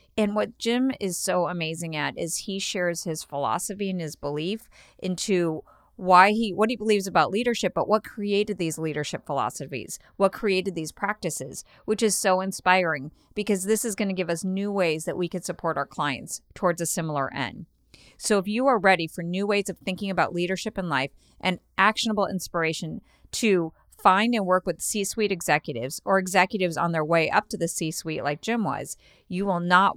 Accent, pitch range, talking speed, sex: American, 175-215 Hz, 190 wpm, female